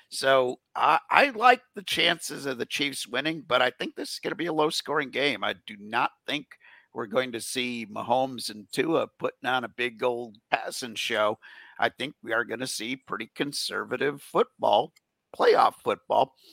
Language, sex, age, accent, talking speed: English, male, 50-69, American, 185 wpm